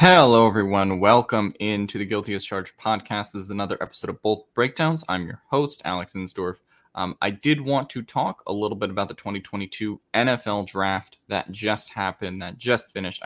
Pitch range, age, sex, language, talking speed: 90-110 Hz, 20-39, male, English, 180 wpm